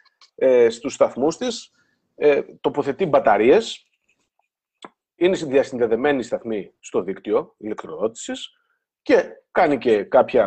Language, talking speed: Greek, 85 wpm